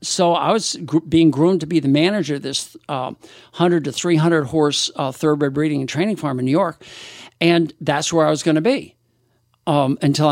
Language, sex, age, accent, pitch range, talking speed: English, male, 60-79, American, 145-185 Hz, 200 wpm